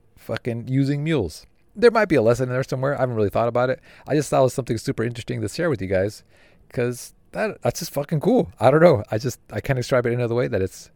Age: 30-49